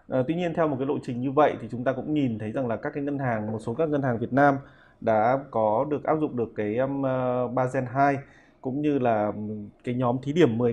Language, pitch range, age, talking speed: Vietnamese, 115-140 Hz, 20-39, 255 wpm